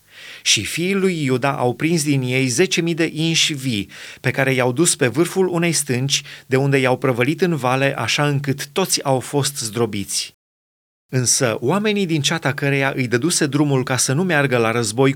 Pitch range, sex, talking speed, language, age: 130-165 Hz, male, 185 wpm, Romanian, 30-49